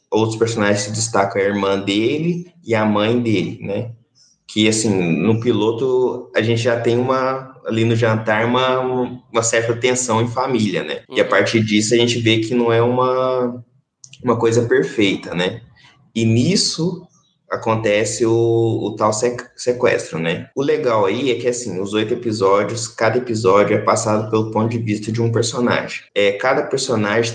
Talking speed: 170 wpm